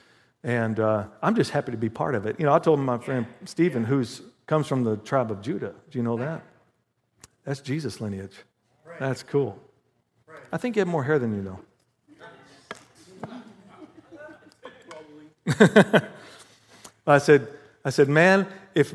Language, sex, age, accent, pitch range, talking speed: English, male, 50-69, American, 140-210 Hz, 150 wpm